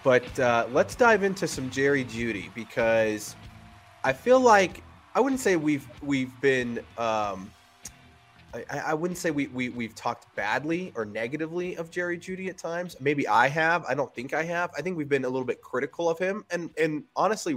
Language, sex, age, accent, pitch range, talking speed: English, male, 20-39, American, 110-135 Hz, 190 wpm